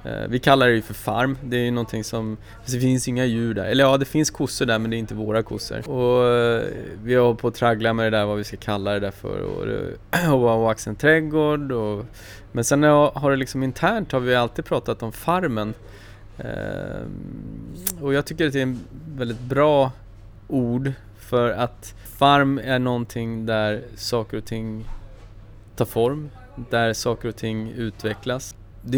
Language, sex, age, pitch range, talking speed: Swedish, male, 20-39, 110-130 Hz, 180 wpm